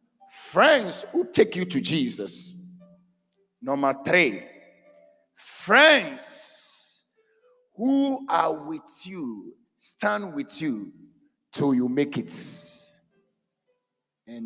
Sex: male